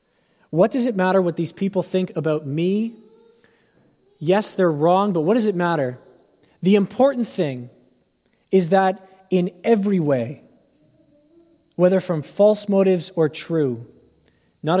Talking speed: 135 wpm